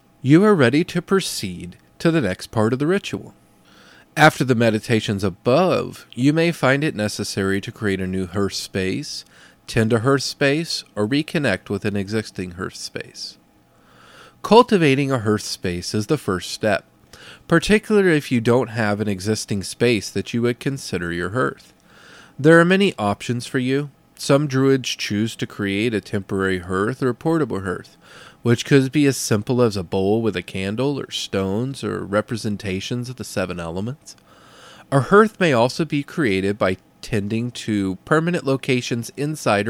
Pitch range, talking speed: 100-145 Hz, 165 wpm